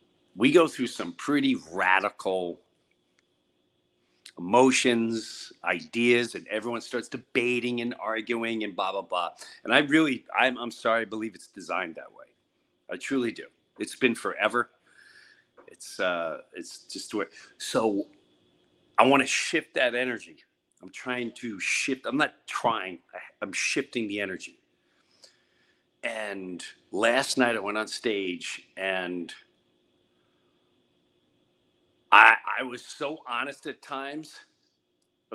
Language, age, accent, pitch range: English, 40-59, American, 90-125 Hz